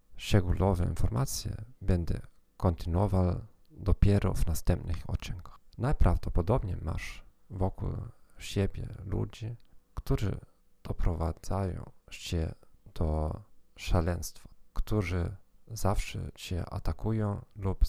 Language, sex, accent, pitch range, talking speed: Polish, male, native, 85-105 Hz, 75 wpm